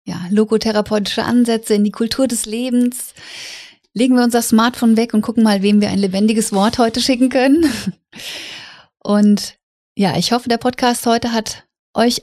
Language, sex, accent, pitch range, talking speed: German, female, German, 205-245 Hz, 160 wpm